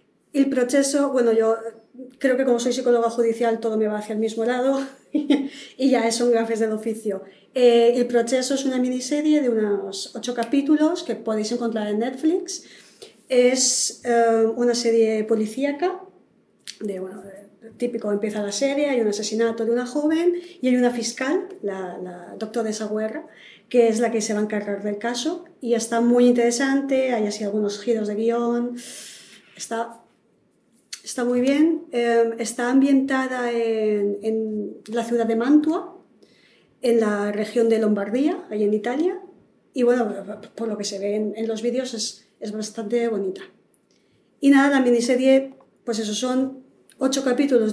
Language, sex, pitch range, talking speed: Spanish, female, 220-265 Hz, 165 wpm